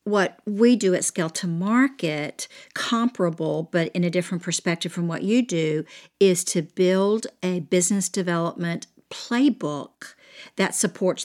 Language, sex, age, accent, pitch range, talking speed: English, female, 50-69, American, 170-210 Hz, 140 wpm